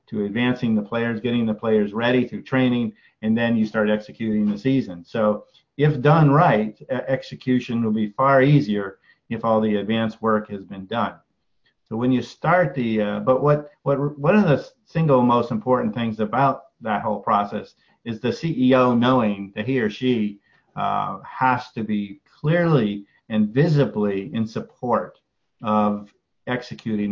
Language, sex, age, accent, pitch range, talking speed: English, male, 50-69, American, 105-135 Hz, 165 wpm